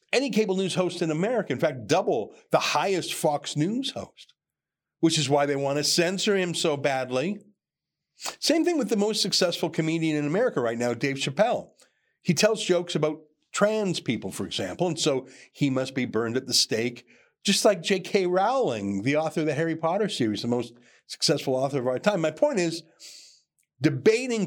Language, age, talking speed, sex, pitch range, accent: English, 50-69, 185 wpm, male, 140-200 Hz, American